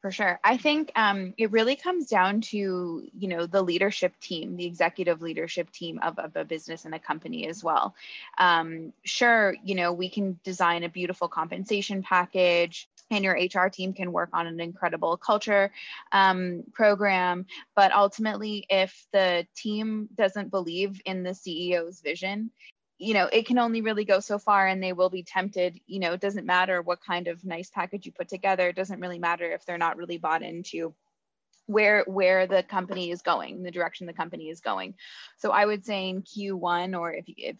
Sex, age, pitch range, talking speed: female, 20-39, 175-200 Hz, 190 wpm